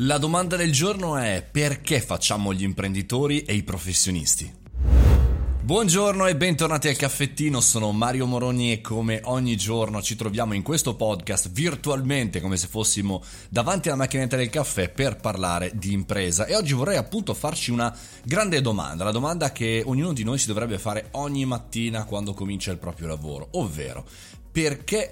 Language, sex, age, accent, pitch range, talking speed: Italian, male, 30-49, native, 100-140 Hz, 160 wpm